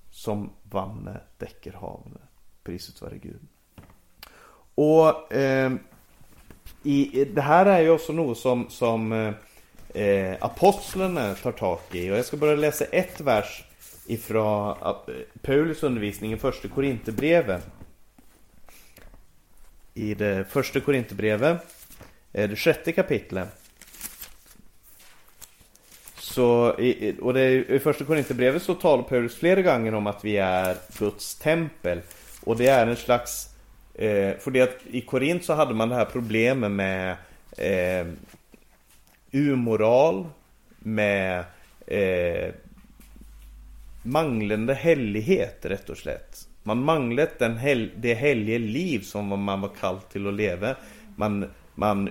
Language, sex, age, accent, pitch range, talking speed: Swedish, male, 30-49, native, 100-135 Hz, 120 wpm